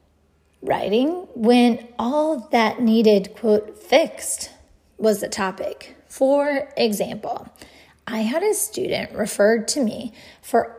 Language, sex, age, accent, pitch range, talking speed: English, female, 30-49, American, 210-275 Hz, 110 wpm